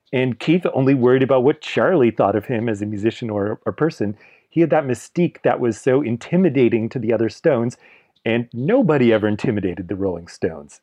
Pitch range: 105-135 Hz